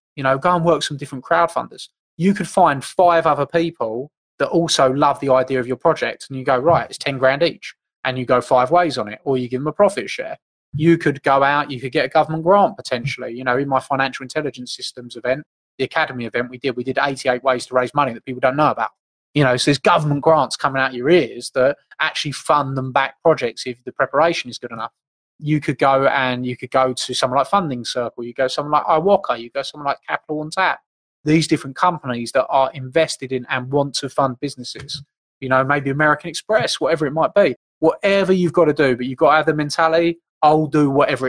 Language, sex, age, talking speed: English, male, 20-39, 240 wpm